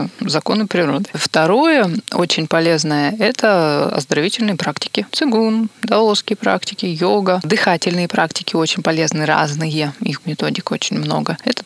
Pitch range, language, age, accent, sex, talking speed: 160-205 Hz, Russian, 20-39, native, female, 120 wpm